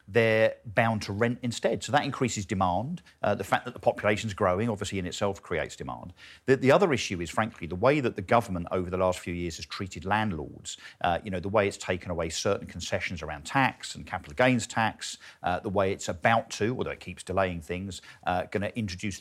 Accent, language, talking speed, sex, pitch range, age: British, English, 220 wpm, male, 90-115 Hz, 50-69